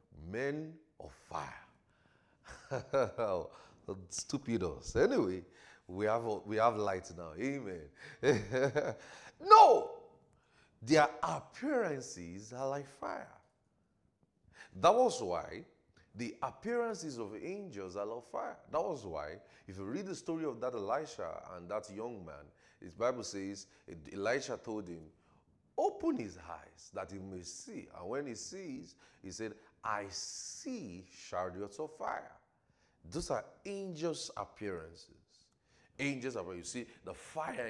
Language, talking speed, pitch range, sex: English, 125 wpm, 100-155 Hz, male